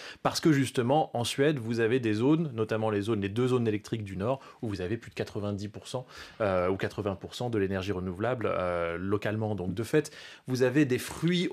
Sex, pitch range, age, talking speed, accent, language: male, 105-140 Hz, 30-49, 205 wpm, French, French